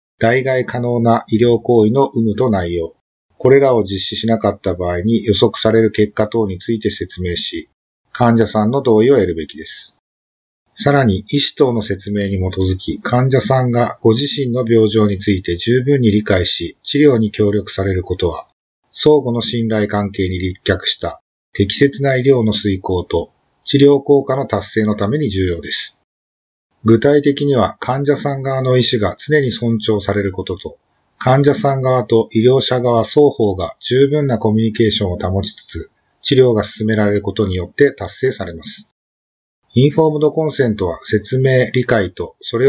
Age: 50-69